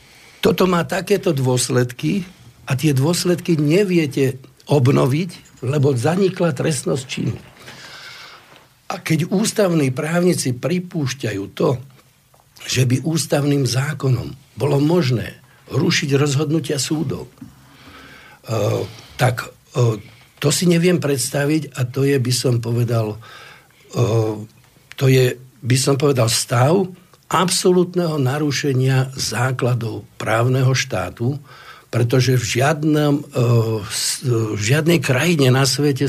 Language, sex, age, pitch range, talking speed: Slovak, male, 60-79, 125-160 Hz, 95 wpm